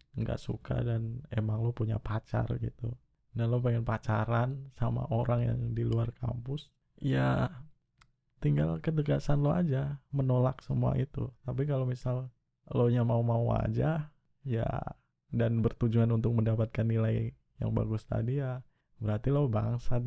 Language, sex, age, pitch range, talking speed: Indonesian, male, 20-39, 115-135 Hz, 140 wpm